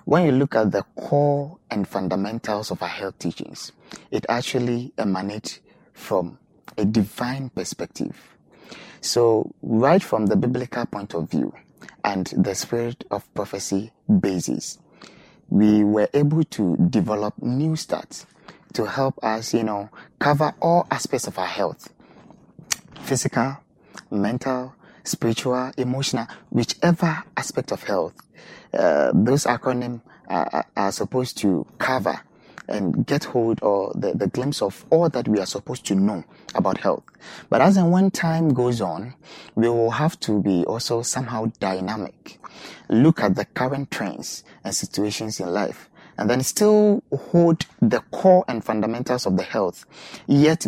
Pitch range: 105-145 Hz